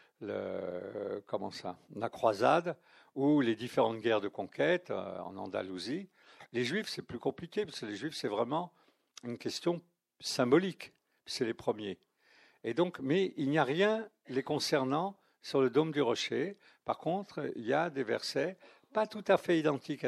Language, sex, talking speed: French, male, 165 wpm